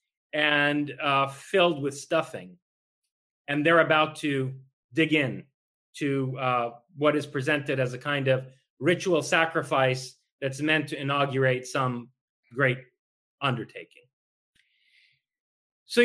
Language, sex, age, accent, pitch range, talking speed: English, male, 30-49, American, 130-170 Hz, 110 wpm